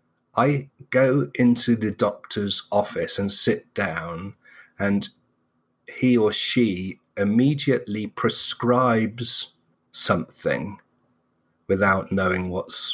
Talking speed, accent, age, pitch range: 90 wpm, British, 30-49, 100-125 Hz